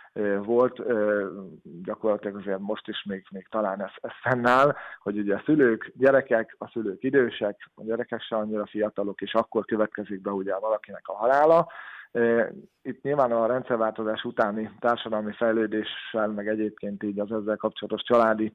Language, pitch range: Hungarian, 105-115 Hz